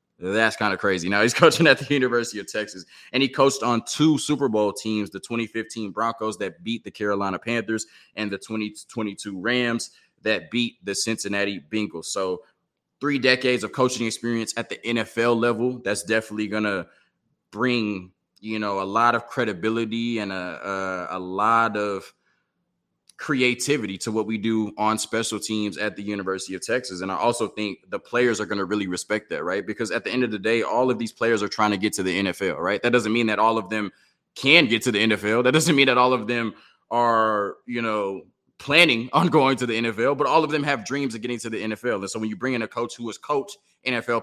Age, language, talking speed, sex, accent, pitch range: 20-39, English, 215 wpm, male, American, 105-120 Hz